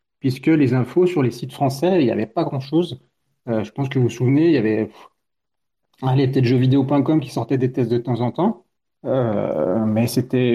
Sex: male